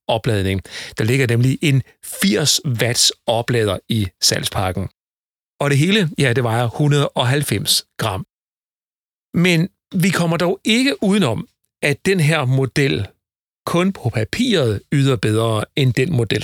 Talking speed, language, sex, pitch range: 130 wpm, Danish, male, 115-160 Hz